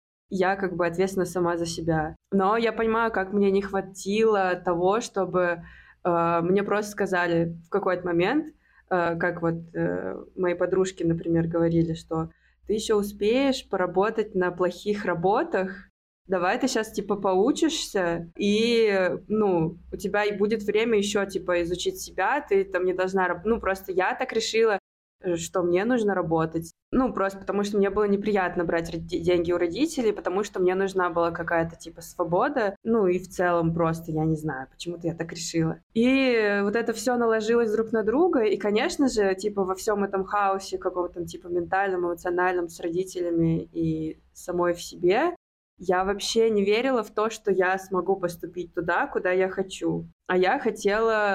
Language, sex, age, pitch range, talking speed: Russian, female, 20-39, 175-210 Hz, 165 wpm